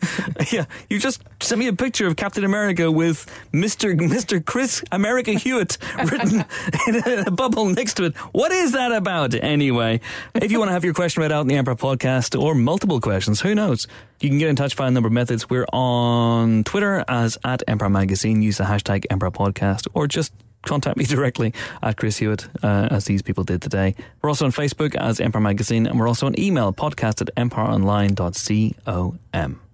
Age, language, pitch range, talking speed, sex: 30-49, English, 105-145 Hz, 195 wpm, male